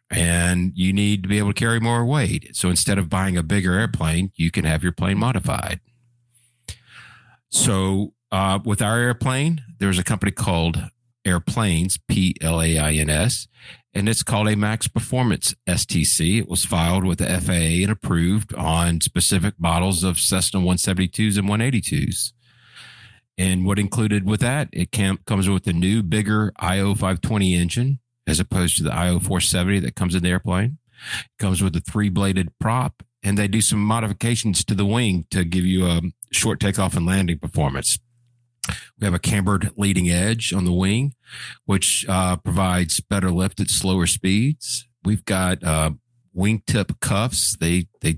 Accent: American